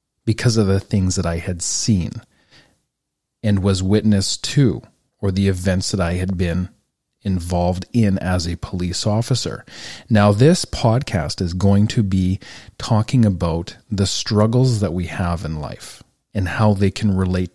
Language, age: English, 40-59